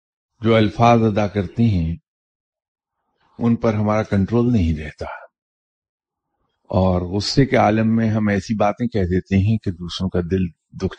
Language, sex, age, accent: English, male, 50-69, Indian